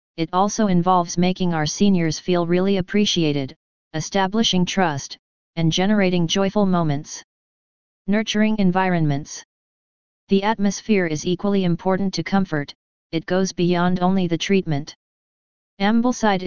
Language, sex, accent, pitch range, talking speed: English, female, American, 165-195 Hz, 115 wpm